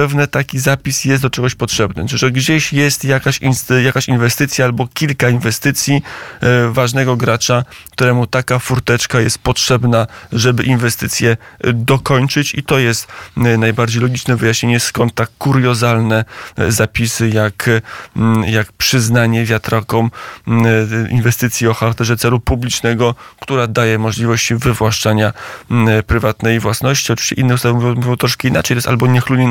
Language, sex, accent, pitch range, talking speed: Polish, male, native, 115-130 Hz, 125 wpm